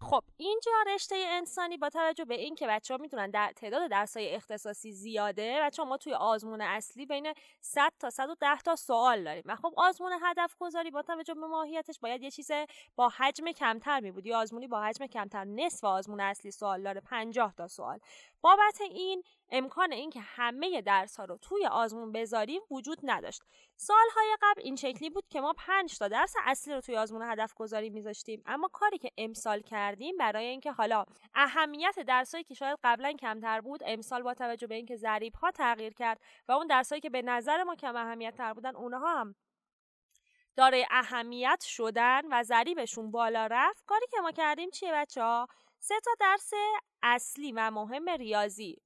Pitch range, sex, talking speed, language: 225-330 Hz, female, 180 wpm, Persian